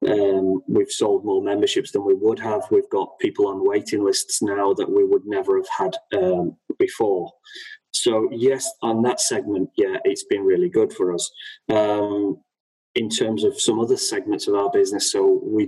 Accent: British